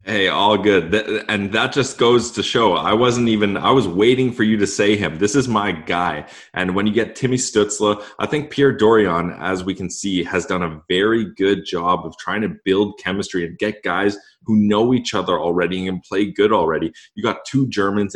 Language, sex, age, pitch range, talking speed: English, male, 20-39, 90-110 Hz, 215 wpm